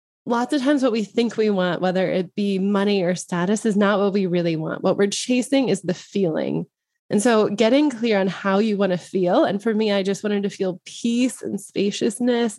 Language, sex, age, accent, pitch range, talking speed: English, female, 20-39, American, 185-240 Hz, 225 wpm